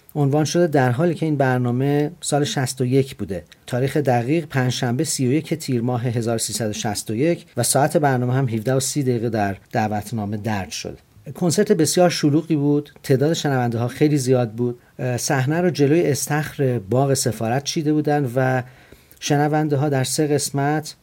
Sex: male